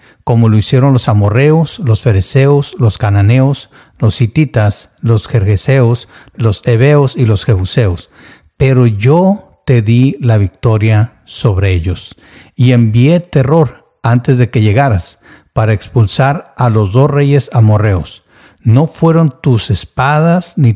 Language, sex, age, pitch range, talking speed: Spanish, male, 50-69, 105-135 Hz, 130 wpm